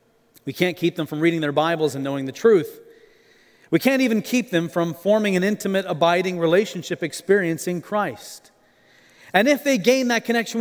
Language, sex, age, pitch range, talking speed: English, male, 40-59, 145-210 Hz, 180 wpm